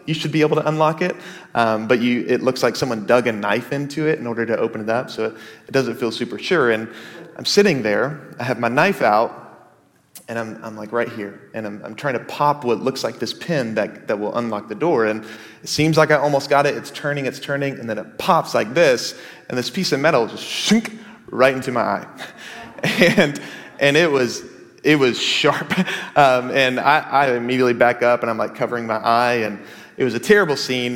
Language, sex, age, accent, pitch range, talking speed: English, male, 30-49, American, 120-150 Hz, 240 wpm